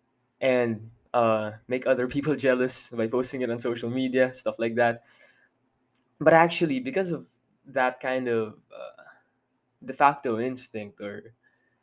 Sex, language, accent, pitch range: male, English, Filipino, 120-145 Hz